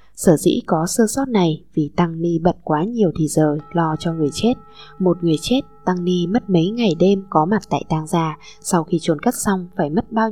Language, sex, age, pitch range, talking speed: Vietnamese, female, 20-39, 155-195 Hz, 235 wpm